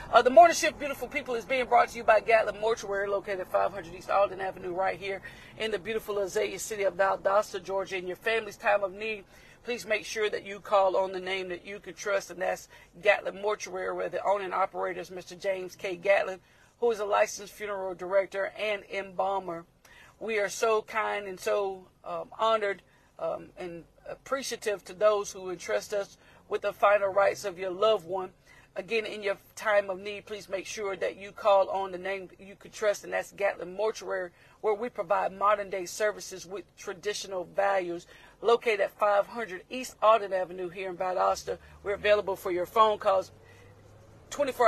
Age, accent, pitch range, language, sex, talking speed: 50-69, American, 185-210 Hz, English, female, 190 wpm